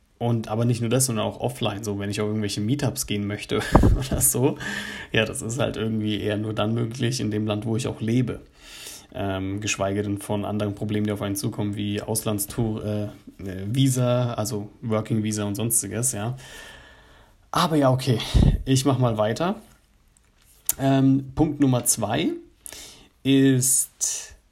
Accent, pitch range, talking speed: German, 105-130 Hz, 160 wpm